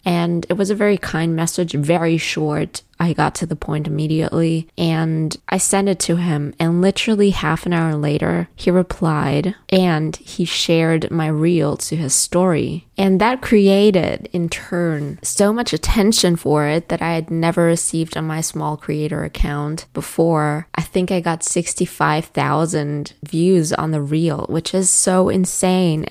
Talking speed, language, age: 165 wpm, English, 20-39